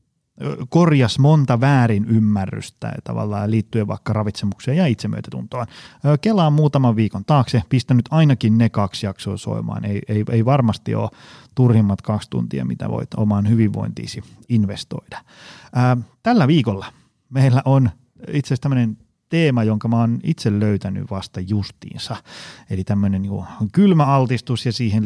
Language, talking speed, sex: Finnish, 135 wpm, male